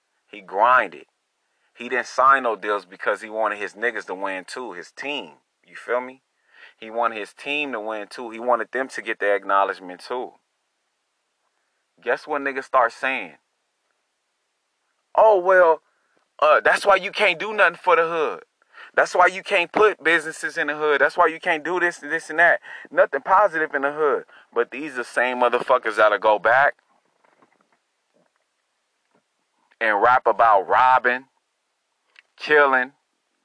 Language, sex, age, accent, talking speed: English, male, 30-49, American, 160 wpm